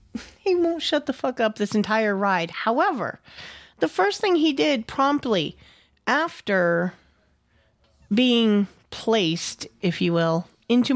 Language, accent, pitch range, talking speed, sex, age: English, American, 195-290 Hz, 125 wpm, female, 40-59